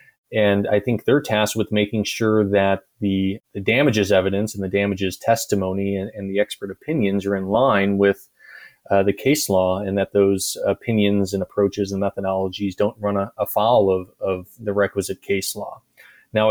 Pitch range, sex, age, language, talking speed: 100-110 Hz, male, 30-49, English, 180 wpm